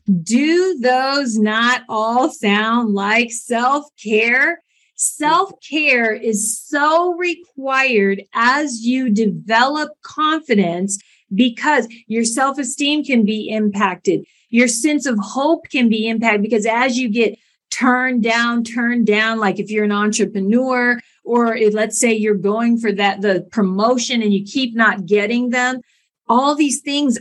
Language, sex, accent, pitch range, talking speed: English, female, American, 210-255 Hz, 130 wpm